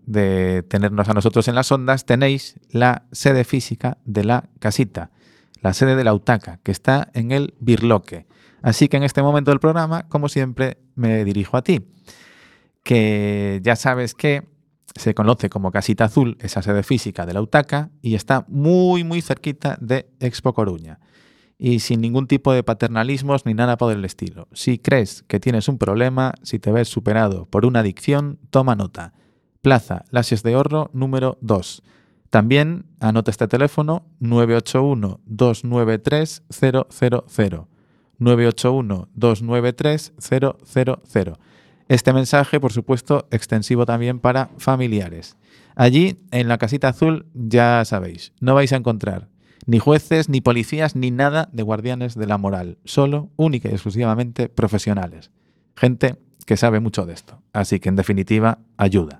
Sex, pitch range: male, 110-135 Hz